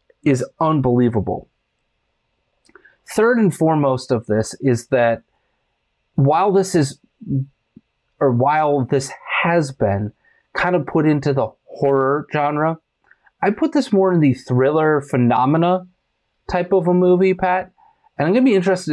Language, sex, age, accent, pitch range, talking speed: English, male, 30-49, American, 120-165 Hz, 135 wpm